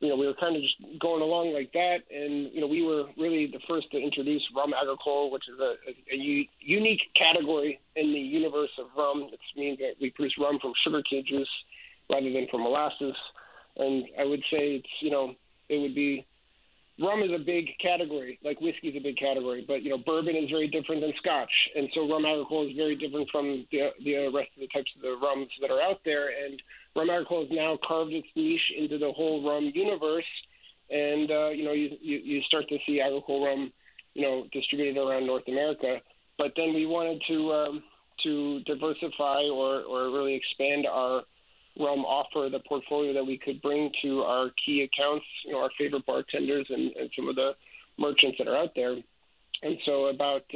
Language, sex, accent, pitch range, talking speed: English, male, American, 140-155 Hz, 205 wpm